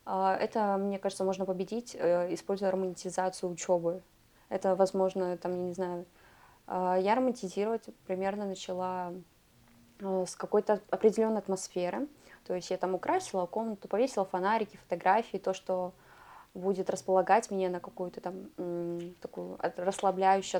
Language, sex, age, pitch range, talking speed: Russian, female, 20-39, 180-200 Hz, 120 wpm